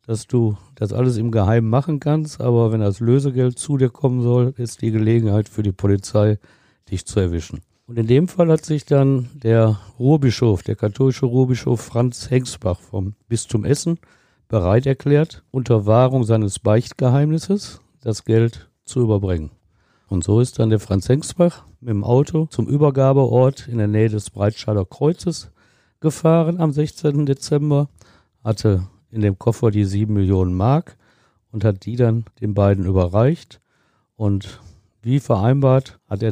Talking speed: 155 wpm